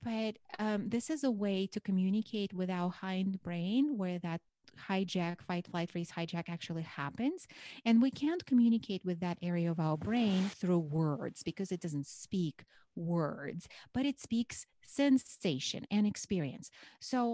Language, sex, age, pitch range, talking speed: English, female, 30-49, 170-230 Hz, 155 wpm